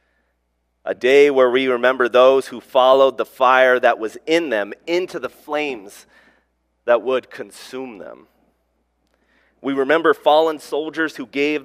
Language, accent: English, American